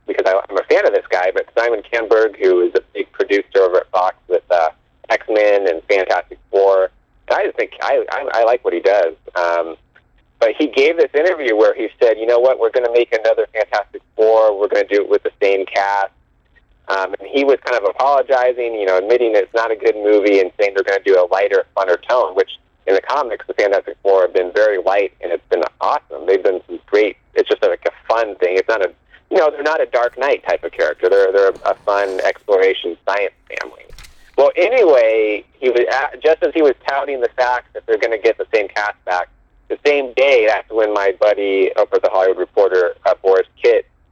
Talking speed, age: 225 wpm, 30-49